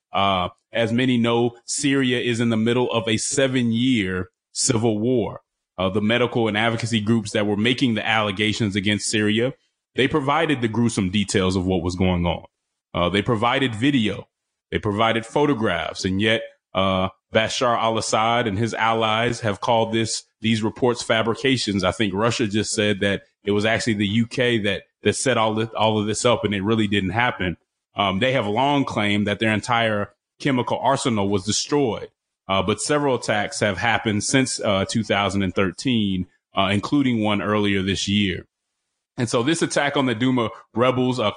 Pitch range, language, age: 105-120 Hz, English, 30-49